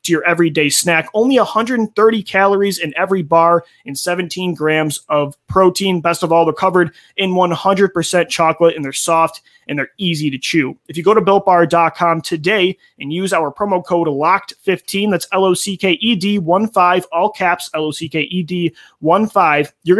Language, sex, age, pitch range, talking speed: English, male, 30-49, 160-195 Hz, 145 wpm